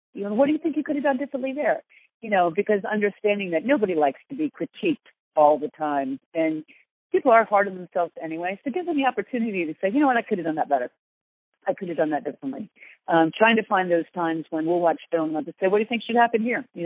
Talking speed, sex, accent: 265 wpm, female, American